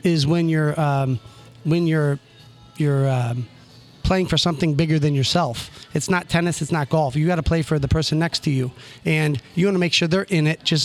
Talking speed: 220 wpm